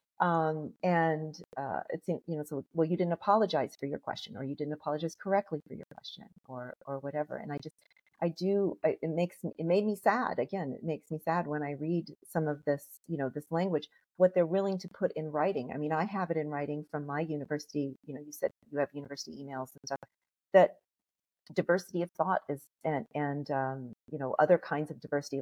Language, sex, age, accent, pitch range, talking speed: English, female, 40-59, American, 145-175 Hz, 220 wpm